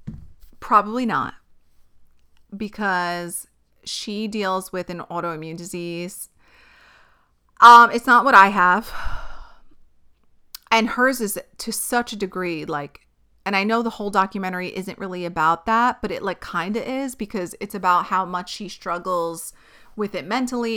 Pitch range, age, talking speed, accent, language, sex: 180-225 Hz, 30-49, 140 wpm, American, English, female